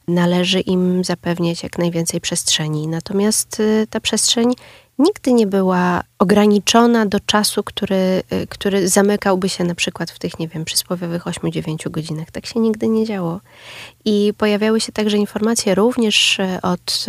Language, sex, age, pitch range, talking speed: Polish, female, 20-39, 175-220 Hz, 140 wpm